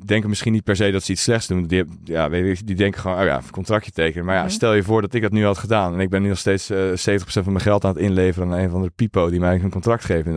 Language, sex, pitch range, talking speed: Dutch, male, 85-105 Hz, 330 wpm